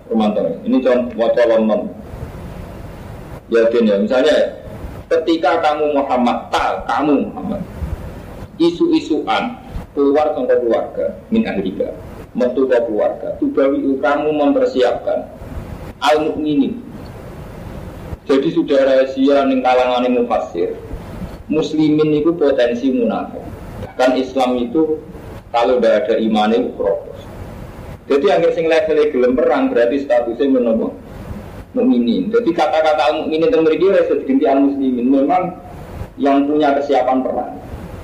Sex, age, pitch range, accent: male, 40-59, 125-195 Hz, native